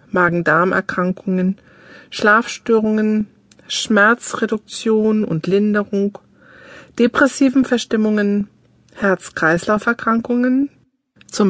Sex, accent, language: female, German, German